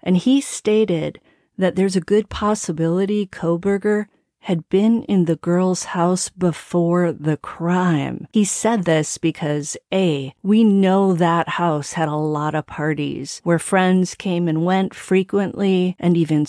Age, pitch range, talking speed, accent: 40-59, 165-200 Hz, 145 wpm, American